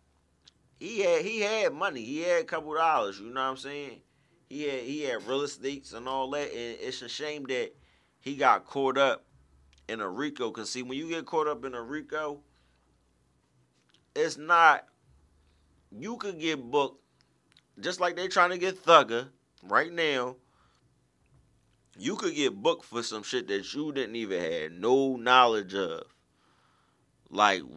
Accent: American